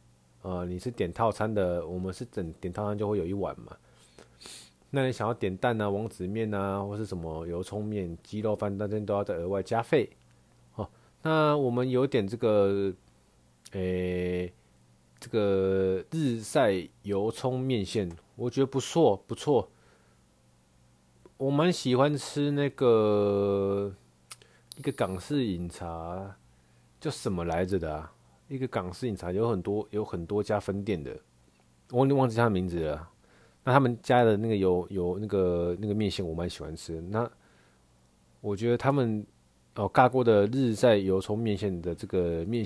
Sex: male